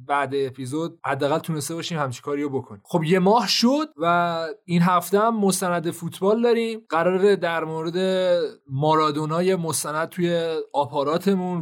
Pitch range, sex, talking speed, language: 155-195 Hz, male, 135 wpm, Persian